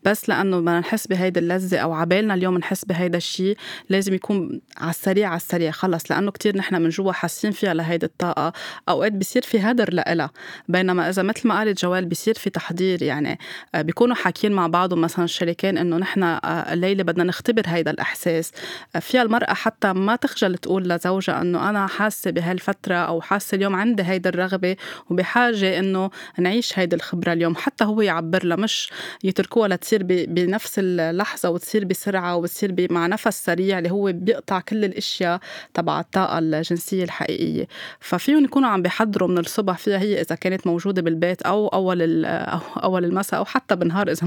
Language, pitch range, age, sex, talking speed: Arabic, 170-200 Hz, 20-39, female, 170 wpm